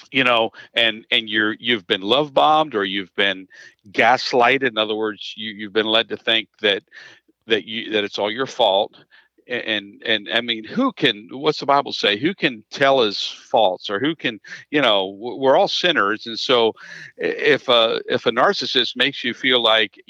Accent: American